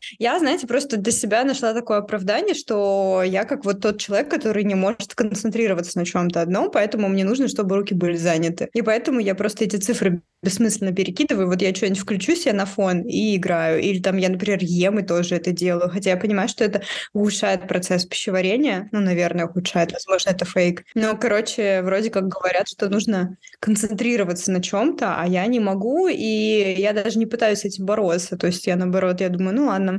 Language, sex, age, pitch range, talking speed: Russian, female, 20-39, 185-220 Hz, 200 wpm